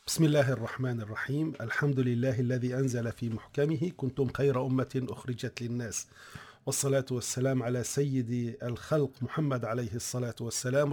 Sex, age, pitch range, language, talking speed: male, 40-59, 125-150 Hz, Arabic, 130 wpm